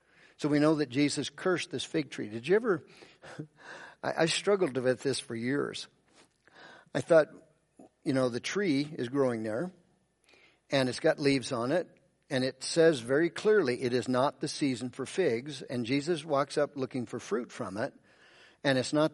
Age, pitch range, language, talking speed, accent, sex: 50-69, 125-150 Hz, English, 180 wpm, American, male